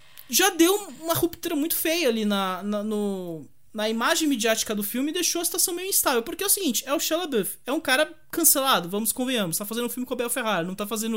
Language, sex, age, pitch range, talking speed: English, male, 20-39, 210-320 Hz, 245 wpm